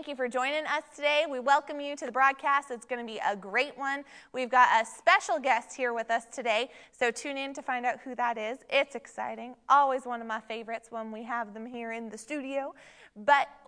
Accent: American